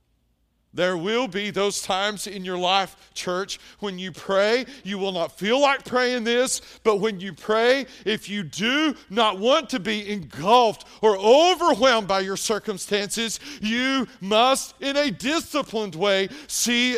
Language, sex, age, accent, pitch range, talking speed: English, male, 40-59, American, 145-240 Hz, 150 wpm